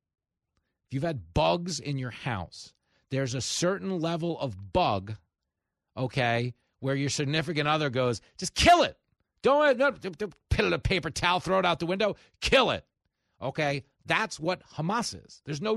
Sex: male